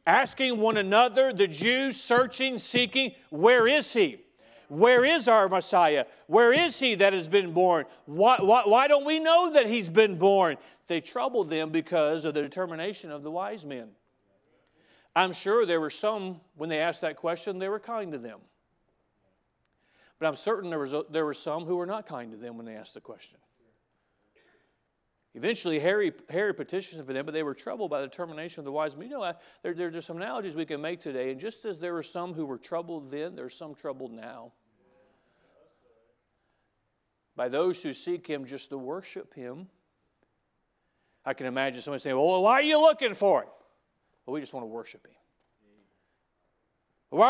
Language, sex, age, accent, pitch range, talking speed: English, male, 40-59, American, 140-225 Hz, 190 wpm